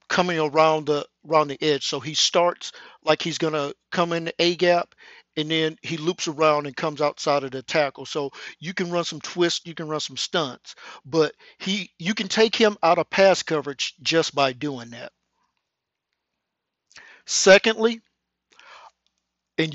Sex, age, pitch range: male, 50-69, 145-185 Hz